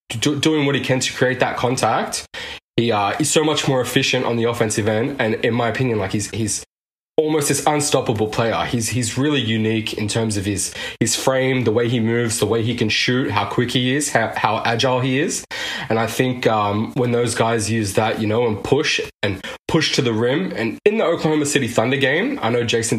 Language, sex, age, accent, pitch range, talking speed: English, male, 20-39, Australian, 105-130 Hz, 225 wpm